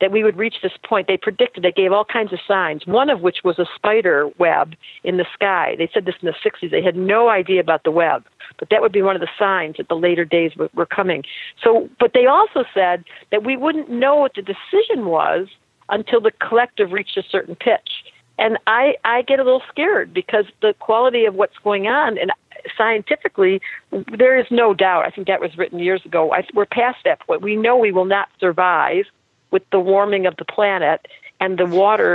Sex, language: female, English